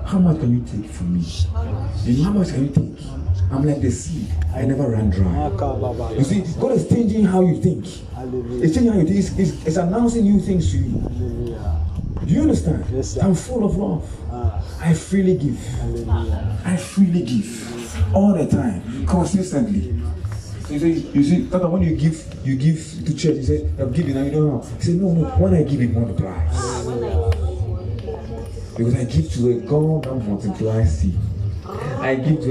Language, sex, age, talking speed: English, male, 30-49, 190 wpm